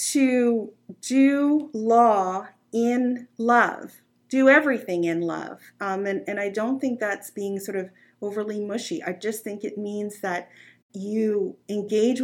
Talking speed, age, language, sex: 140 wpm, 40-59, English, female